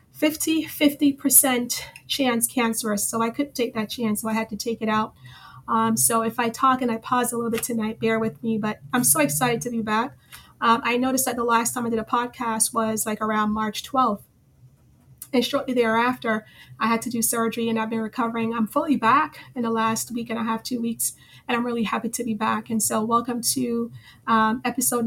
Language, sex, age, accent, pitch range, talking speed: English, female, 30-49, American, 225-250 Hz, 220 wpm